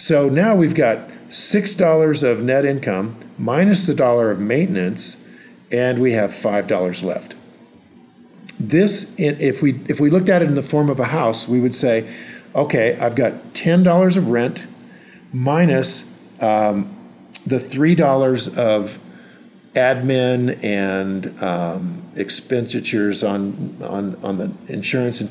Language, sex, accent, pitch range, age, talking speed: English, male, American, 115-155 Hz, 50-69, 130 wpm